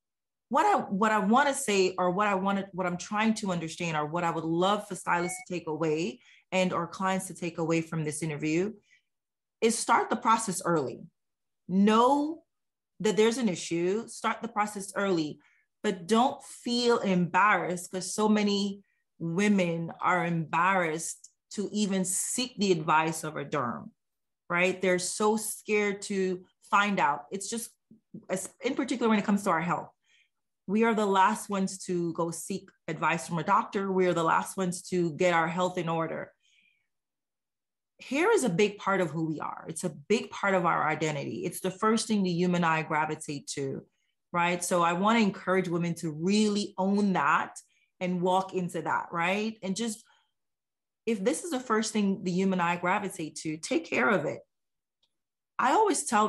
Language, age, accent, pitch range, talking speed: English, 30-49, American, 170-210 Hz, 180 wpm